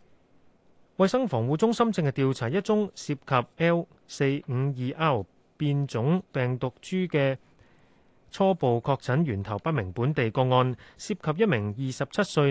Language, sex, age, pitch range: Chinese, male, 30-49, 125-165 Hz